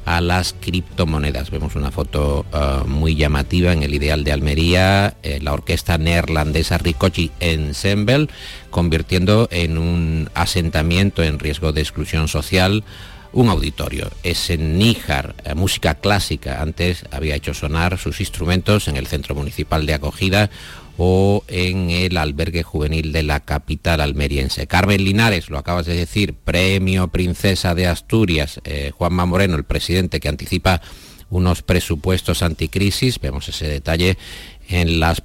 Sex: male